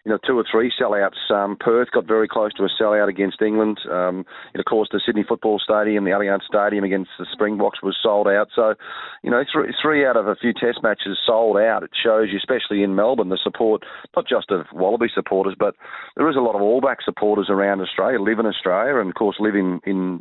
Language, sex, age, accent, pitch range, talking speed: English, male, 40-59, Australian, 100-115 Hz, 235 wpm